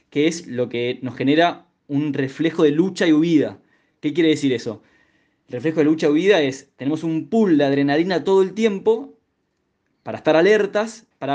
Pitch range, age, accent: 135-185 Hz, 20-39, Argentinian